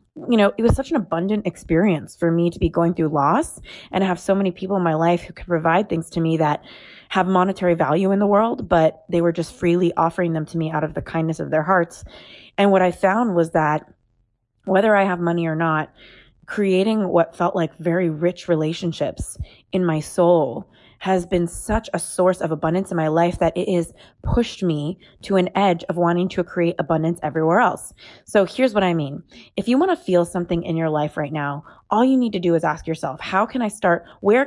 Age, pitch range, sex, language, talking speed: 20-39, 165-200 Hz, female, English, 225 wpm